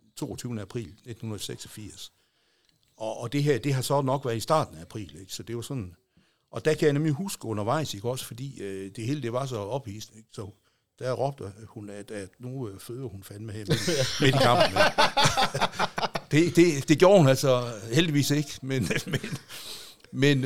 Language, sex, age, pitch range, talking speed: Danish, male, 60-79, 105-135 Hz, 185 wpm